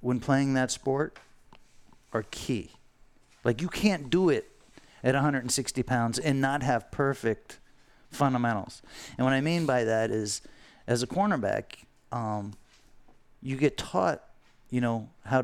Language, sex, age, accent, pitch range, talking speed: English, male, 40-59, American, 115-145 Hz, 140 wpm